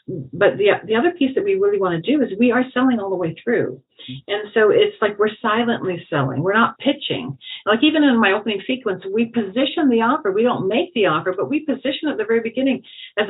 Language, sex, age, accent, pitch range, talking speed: English, female, 50-69, American, 185-260 Hz, 235 wpm